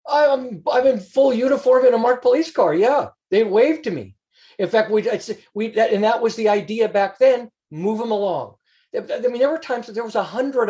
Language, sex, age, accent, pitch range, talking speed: English, male, 40-59, American, 170-225 Hz, 230 wpm